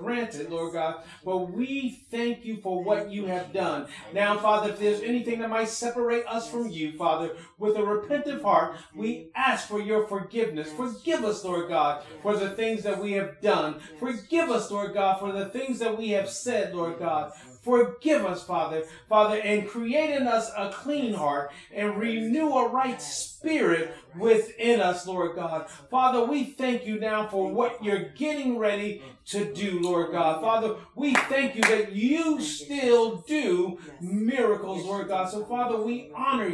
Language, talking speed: English, 175 wpm